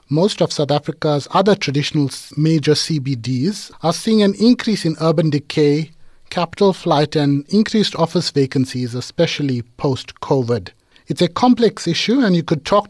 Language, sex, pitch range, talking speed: English, male, 140-185 Hz, 145 wpm